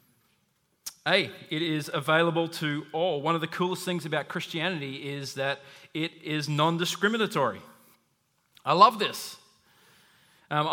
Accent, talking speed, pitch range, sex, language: Australian, 130 wpm, 150-190 Hz, male, English